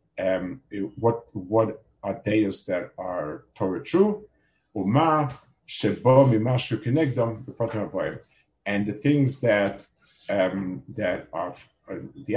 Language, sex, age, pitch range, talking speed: English, male, 50-69, 110-145 Hz, 85 wpm